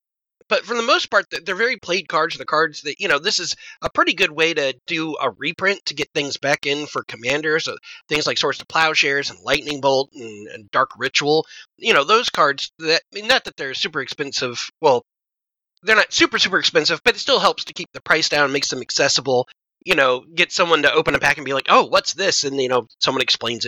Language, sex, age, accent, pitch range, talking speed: English, male, 30-49, American, 140-190 Hz, 230 wpm